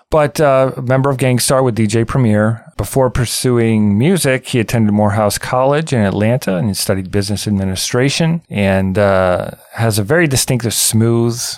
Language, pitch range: English, 95-120 Hz